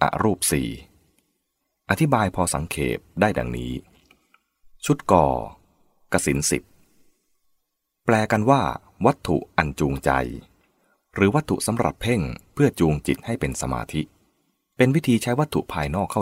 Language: English